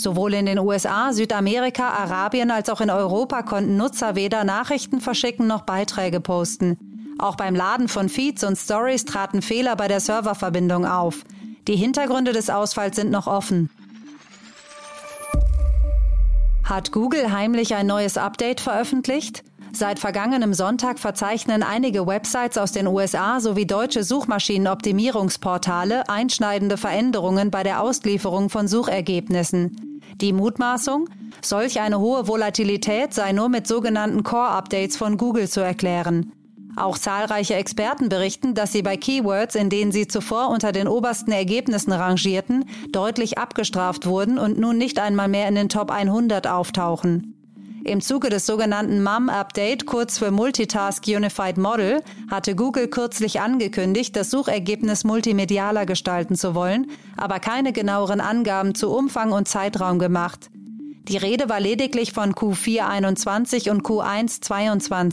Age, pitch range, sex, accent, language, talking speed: 30-49, 195-235 Hz, female, German, German, 135 wpm